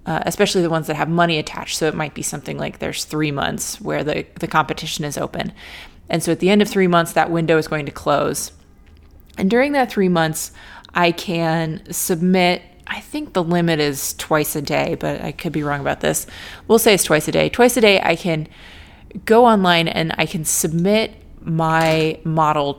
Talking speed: 210 wpm